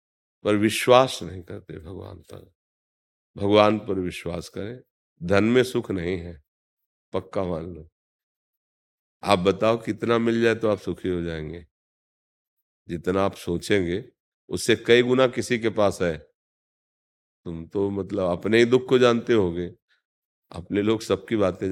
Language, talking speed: Hindi, 140 wpm